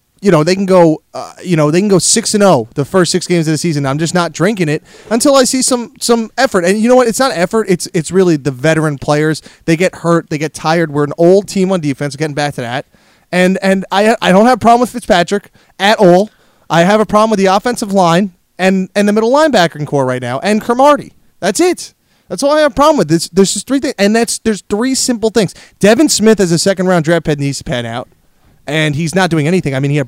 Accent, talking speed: American, 265 wpm